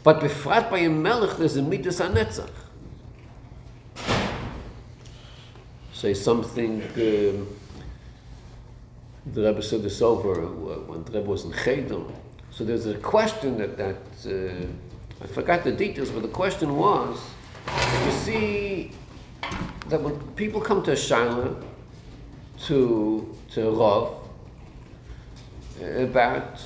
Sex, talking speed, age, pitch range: male, 110 wpm, 50-69, 110-140 Hz